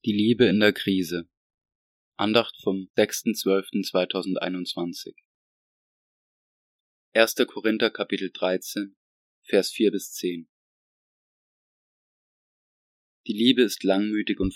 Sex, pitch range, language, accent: male, 95-110 Hz, German, German